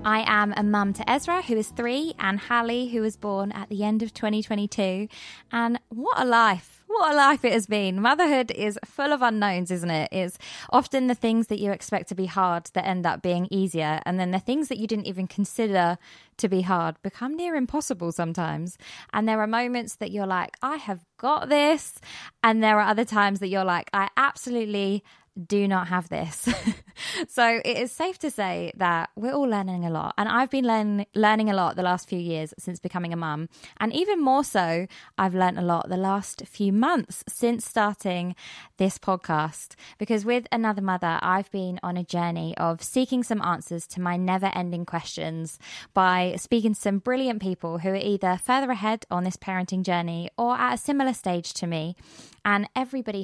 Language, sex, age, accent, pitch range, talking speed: English, female, 20-39, British, 180-235 Hz, 200 wpm